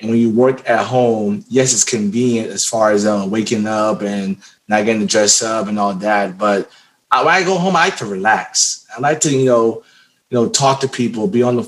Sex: male